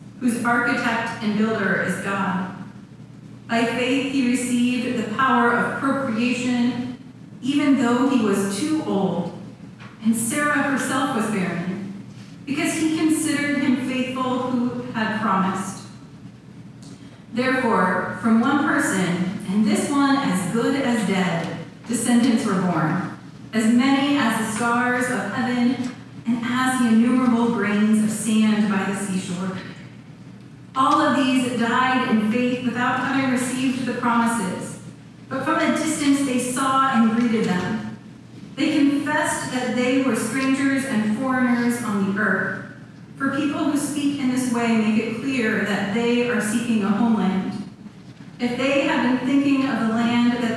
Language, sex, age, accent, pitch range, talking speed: English, female, 30-49, American, 215-255 Hz, 140 wpm